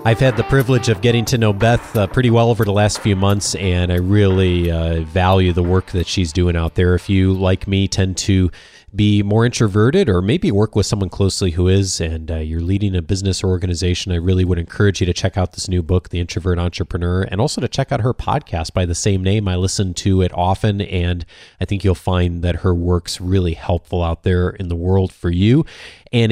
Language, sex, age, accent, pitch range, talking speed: English, male, 30-49, American, 95-120 Hz, 230 wpm